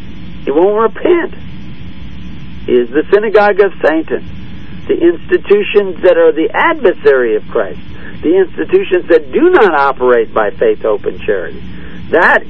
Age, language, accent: 60-79, English, American